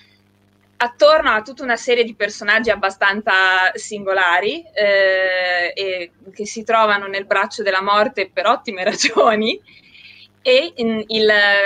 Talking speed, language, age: 115 wpm, Italian, 20-39